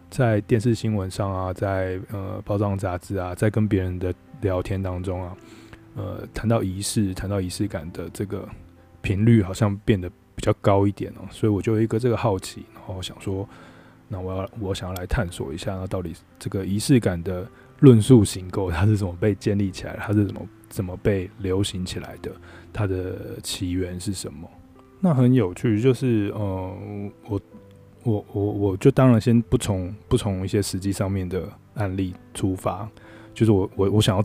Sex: male